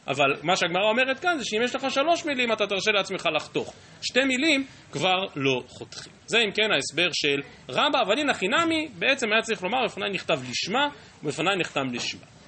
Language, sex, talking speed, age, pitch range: Hebrew, male, 190 wpm, 30-49, 145-225 Hz